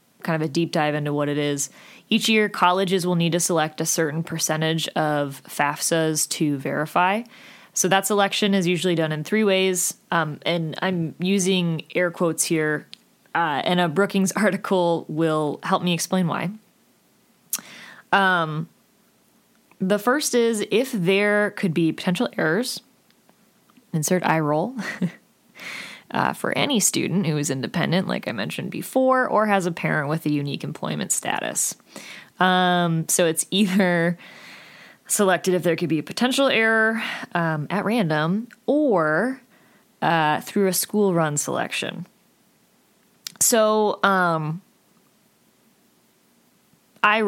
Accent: American